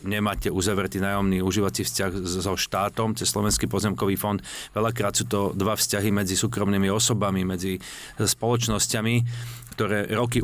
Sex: male